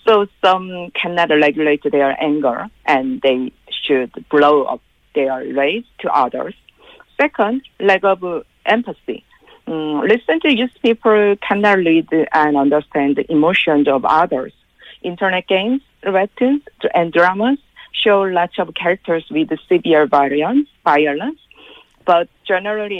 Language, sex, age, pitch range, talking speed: English, female, 50-69, 155-215 Hz, 120 wpm